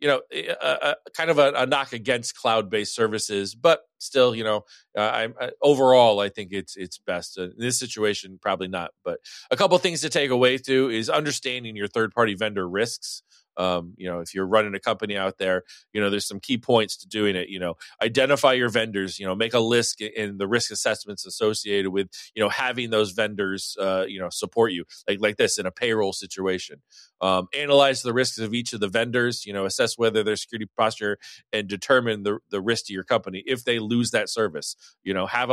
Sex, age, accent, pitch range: male, 30-49, American, 100-125 Hz